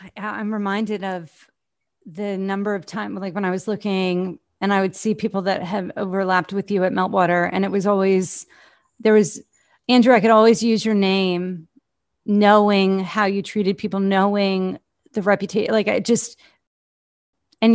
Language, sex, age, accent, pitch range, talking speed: English, female, 30-49, American, 190-215 Hz, 165 wpm